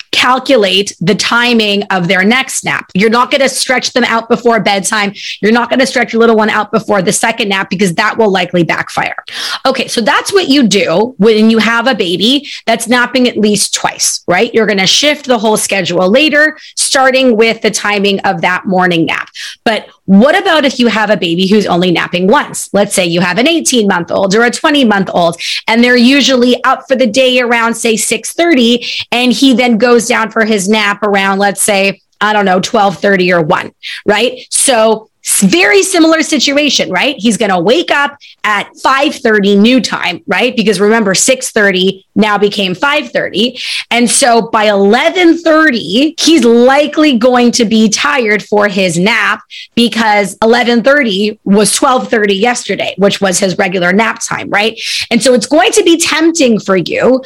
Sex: female